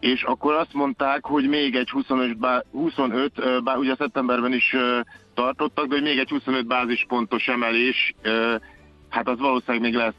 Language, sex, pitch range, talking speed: Hungarian, male, 125-140 Hz, 155 wpm